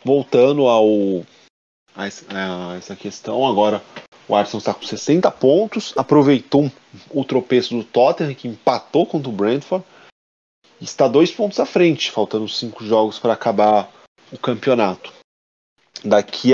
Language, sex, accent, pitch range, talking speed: Portuguese, male, Brazilian, 105-130 Hz, 125 wpm